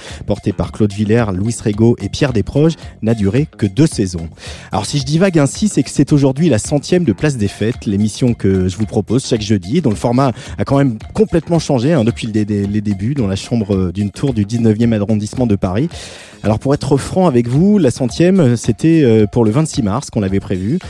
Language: French